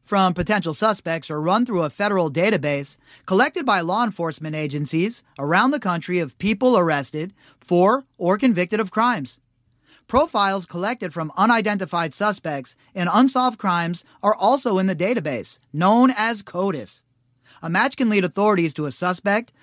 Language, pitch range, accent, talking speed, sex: English, 155-210 Hz, American, 150 wpm, male